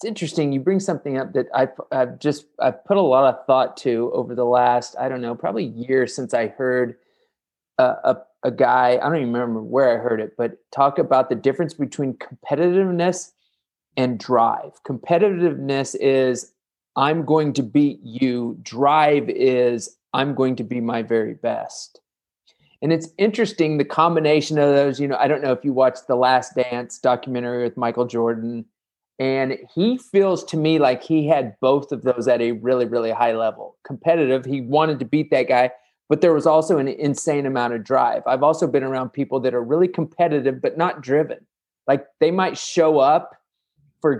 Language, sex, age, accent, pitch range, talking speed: English, male, 30-49, American, 125-160 Hz, 185 wpm